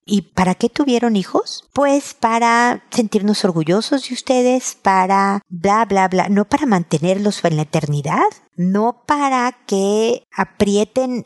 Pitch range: 170-225 Hz